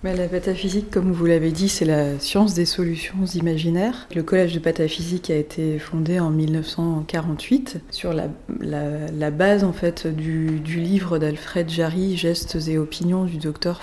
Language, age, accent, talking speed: French, 20-39, French, 170 wpm